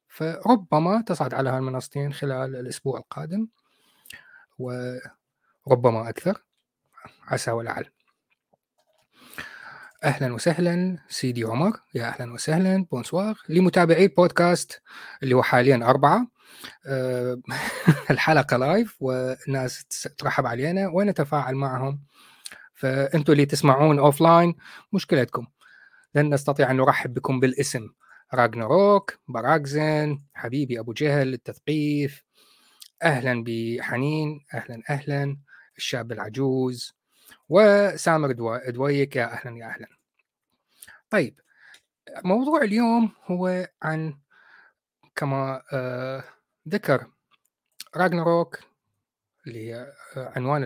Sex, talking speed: male, 85 wpm